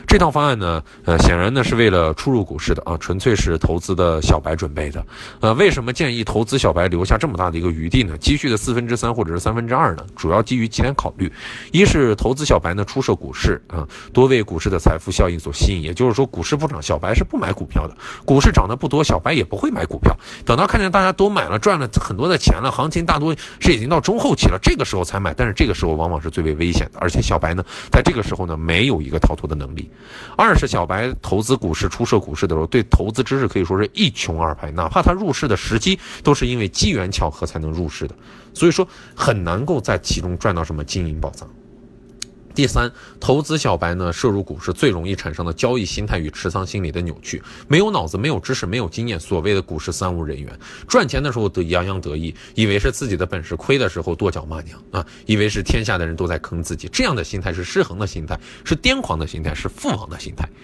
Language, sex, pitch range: Chinese, male, 80-120 Hz